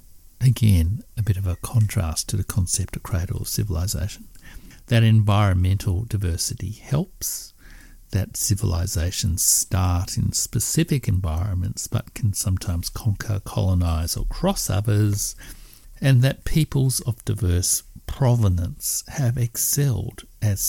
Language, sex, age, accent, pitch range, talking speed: English, male, 60-79, Australian, 90-115 Hz, 115 wpm